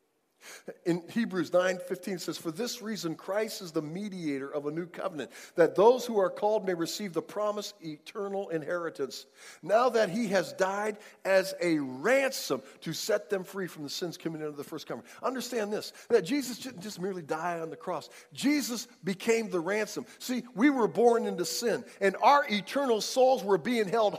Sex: male